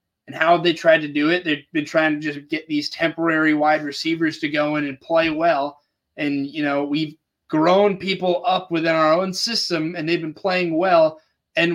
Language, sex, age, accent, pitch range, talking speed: English, male, 20-39, American, 150-185 Hz, 200 wpm